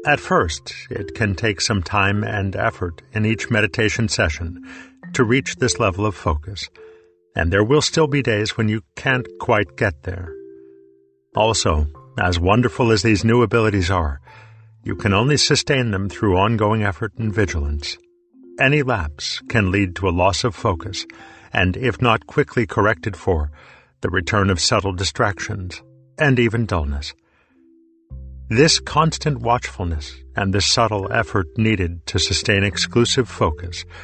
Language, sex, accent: Hindi, male, American